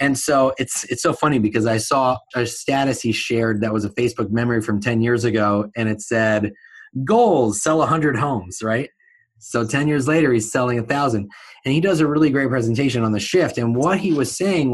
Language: English